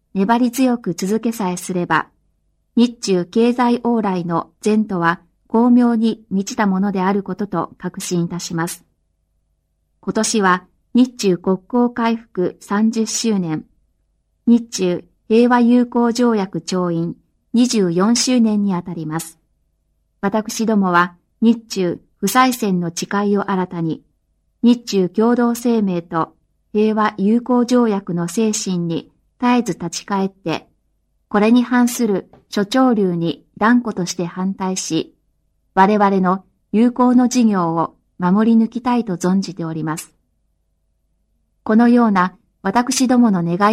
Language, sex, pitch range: Chinese, female, 175-230 Hz